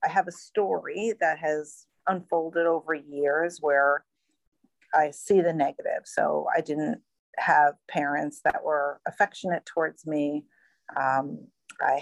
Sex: female